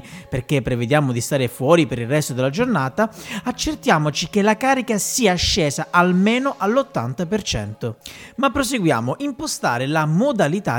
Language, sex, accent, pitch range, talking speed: Italian, male, native, 130-210 Hz, 130 wpm